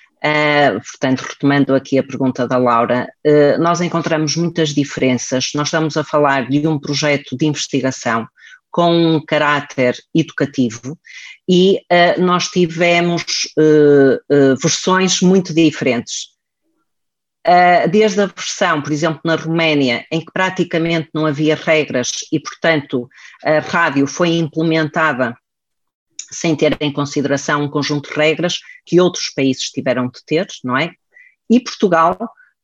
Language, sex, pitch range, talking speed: Portuguese, female, 140-175 Hz, 125 wpm